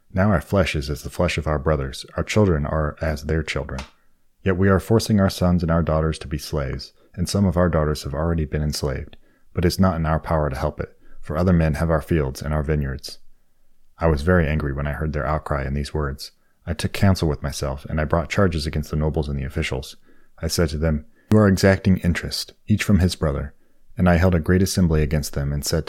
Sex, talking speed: male, 245 wpm